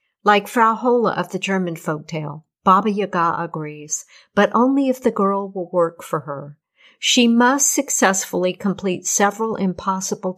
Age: 50-69